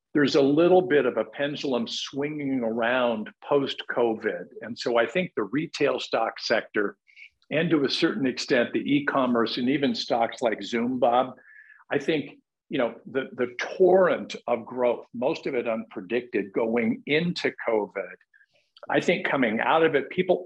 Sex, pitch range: male, 120-160 Hz